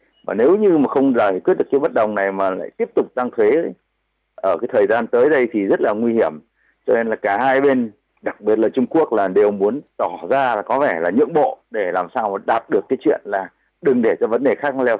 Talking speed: 270 wpm